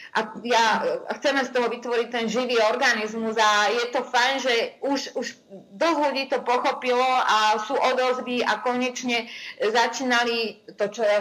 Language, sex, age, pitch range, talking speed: Slovak, female, 30-49, 225-265 Hz, 150 wpm